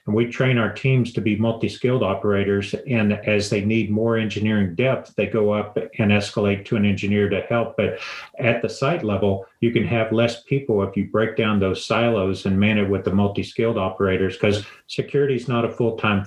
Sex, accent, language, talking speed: male, American, English, 200 wpm